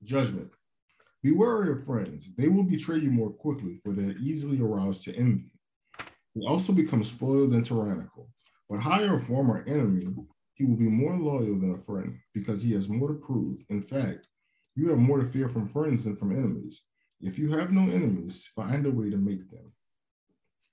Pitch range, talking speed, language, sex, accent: 95-135 Hz, 185 wpm, English, male, American